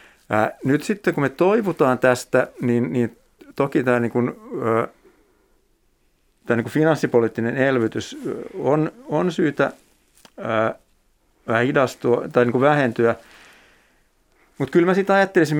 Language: Finnish